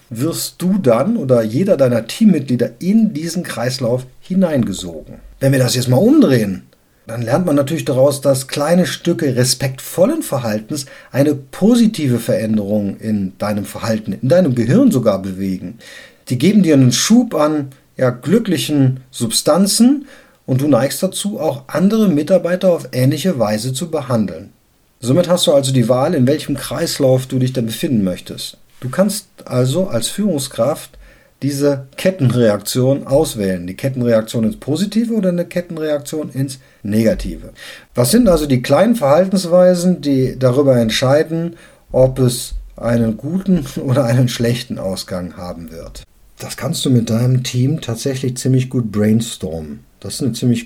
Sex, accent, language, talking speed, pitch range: male, German, German, 145 wpm, 115-165 Hz